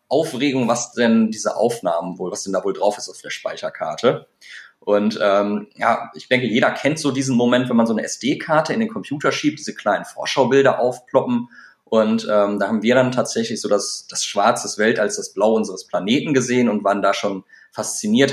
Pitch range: 110-140 Hz